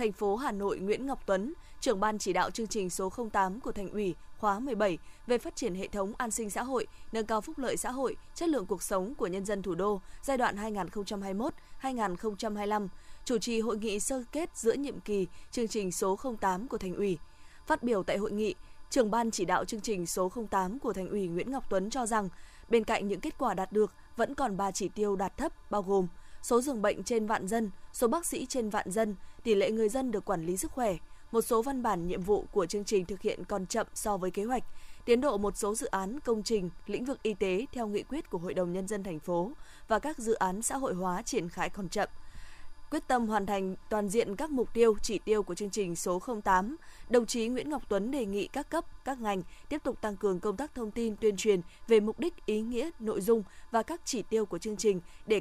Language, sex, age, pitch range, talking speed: Vietnamese, female, 20-39, 195-240 Hz, 240 wpm